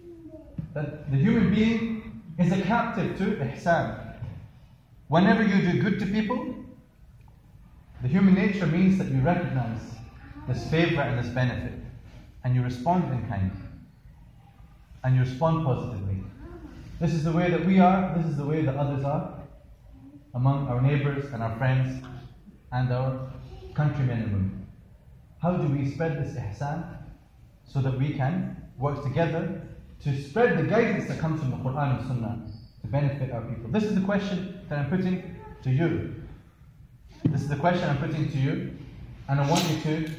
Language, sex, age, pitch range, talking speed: English, male, 30-49, 130-185 Hz, 165 wpm